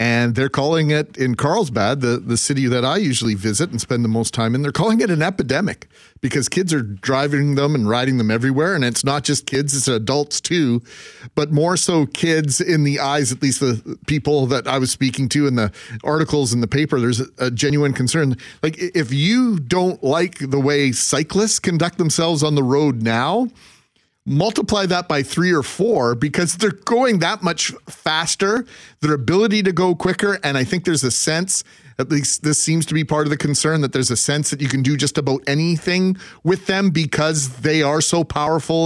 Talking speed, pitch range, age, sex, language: 205 wpm, 135-165 Hz, 40-59, male, English